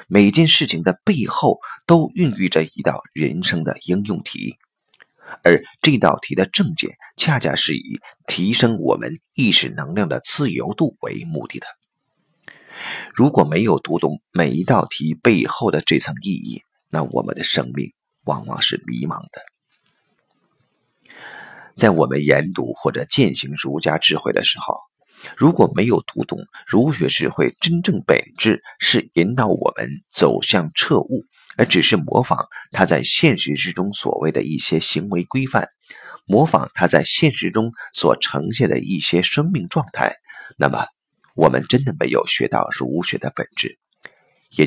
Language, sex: Chinese, male